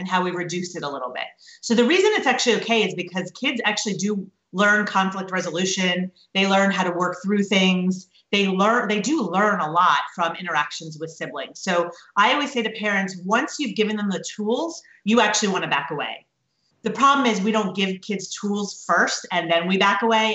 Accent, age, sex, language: American, 30-49, female, English